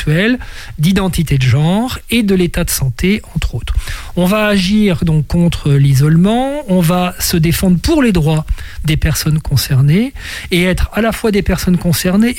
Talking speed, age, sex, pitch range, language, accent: 165 wpm, 40-59, male, 140-175 Hz, French, French